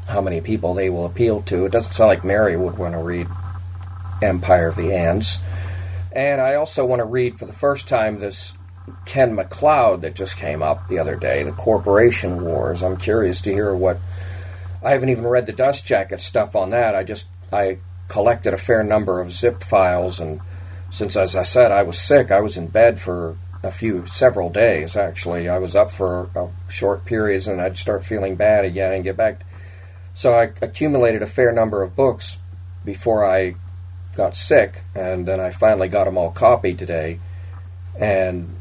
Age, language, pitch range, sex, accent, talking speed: 40-59, English, 90-100 Hz, male, American, 195 wpm